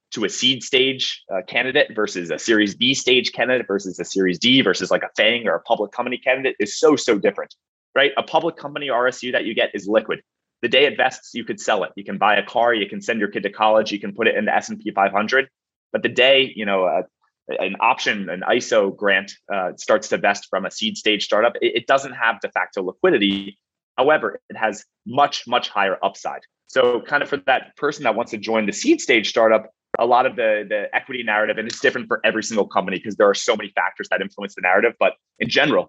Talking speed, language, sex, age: 235 wpm, English, male, 20-39